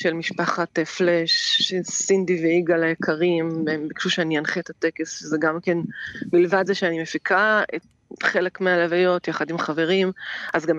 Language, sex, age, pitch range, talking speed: Hebrew, female, 20-39, 170-205 Hz, 145 wpm